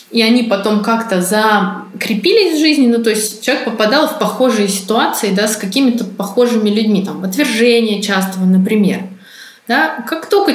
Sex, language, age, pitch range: female, Russian, 20-39, 210-265 Hz